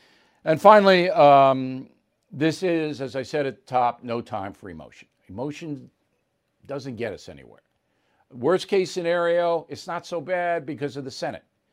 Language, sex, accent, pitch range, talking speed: English, male, American, 125-165 Hz, 160 wpm